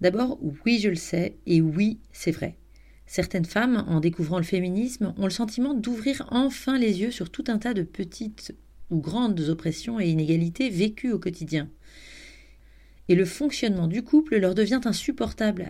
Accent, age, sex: French, 40-59, female